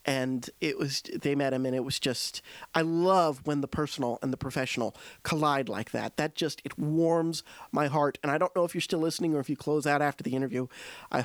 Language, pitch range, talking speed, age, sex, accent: English, 135-165 Hz, 235 wpm, 40-59, male, American